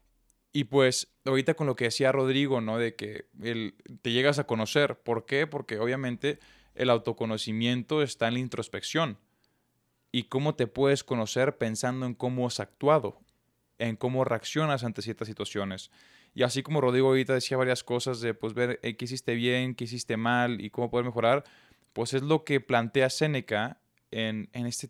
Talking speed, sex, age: 175 wpm, male, 20-39